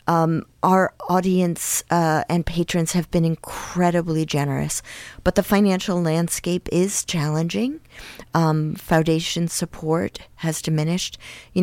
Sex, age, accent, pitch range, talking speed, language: female, 40-59, American, 150-175 Hz, 115 wpm, English